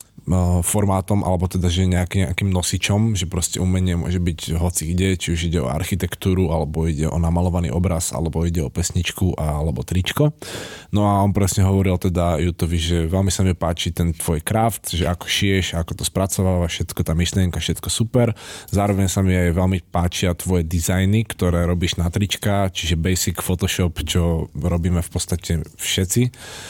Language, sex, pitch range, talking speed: Slovak, male, 90-105 Hz, 170 wpm